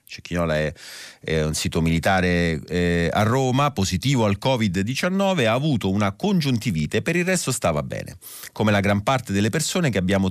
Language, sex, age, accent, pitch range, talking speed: Italian, male, 40-59, native, 85-110 Hz, 175 wpm